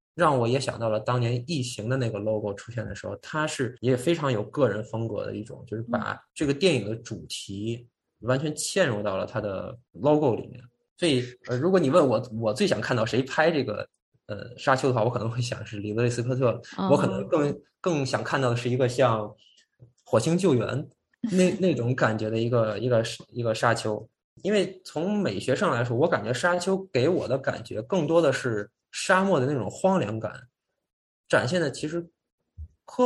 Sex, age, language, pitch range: male, 20-39, Chinese, 115-165 Hz